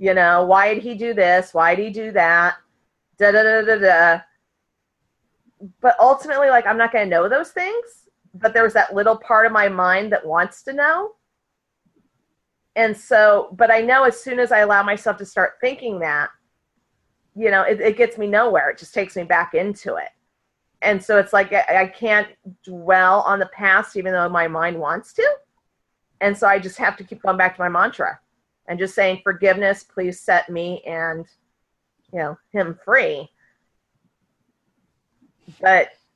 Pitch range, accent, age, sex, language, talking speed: 185-230 Hz, American, 40-59, female, English, 185 wpm